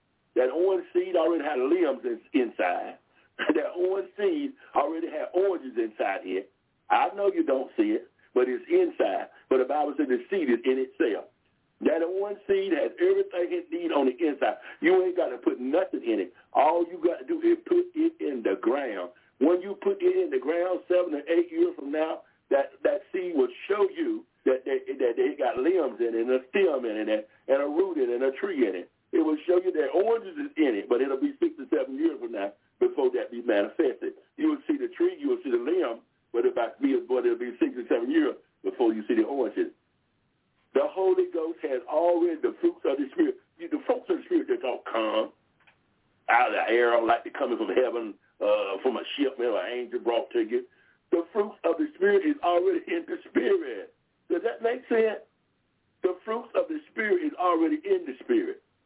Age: 60-79